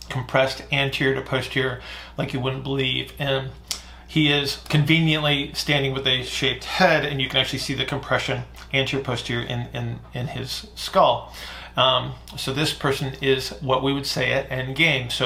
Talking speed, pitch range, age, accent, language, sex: 170 wpm, 125-140 Hz, 40-59, American, English, male